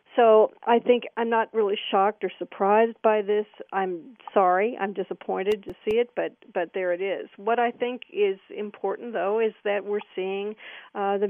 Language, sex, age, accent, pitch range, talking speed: English, female, 50-69, American, 185-220 Hz, 185 wpm